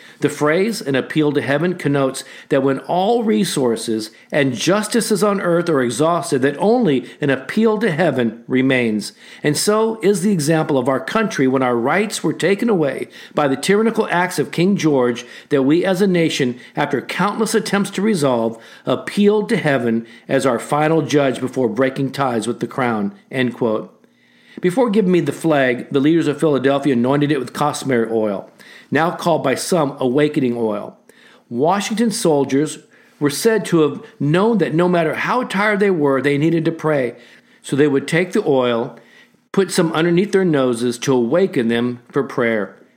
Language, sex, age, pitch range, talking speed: English, male, 50-69, 135-185 Hz, 170 wpm